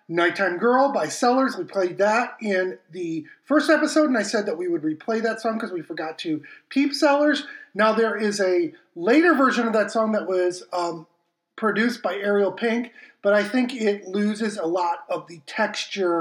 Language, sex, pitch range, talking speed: English, male, 180-240 Hz, 195 wpm